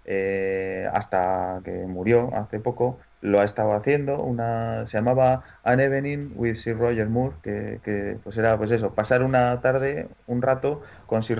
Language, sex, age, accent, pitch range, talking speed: Spanish, male, 30-49, Spanish, 100-125 Hz, 170 wpm